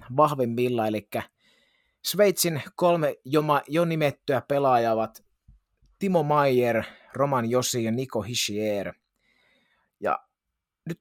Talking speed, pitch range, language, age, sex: 105 wpm, 115-150 Hz, Finnish, 30-49, male